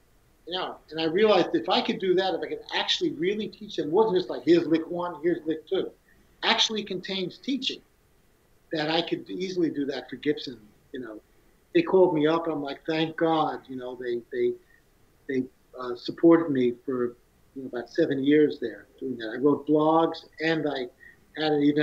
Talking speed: 200 wpm